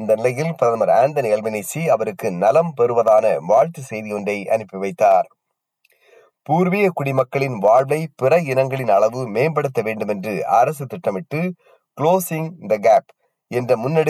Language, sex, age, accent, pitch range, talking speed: Tamil, male, 30-49, native, 115-160 Hz, 65 wpm